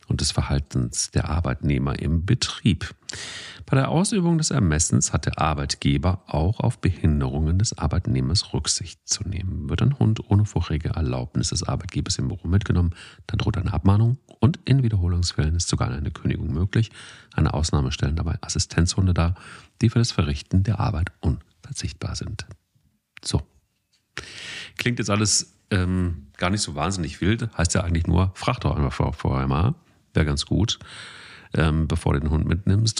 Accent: German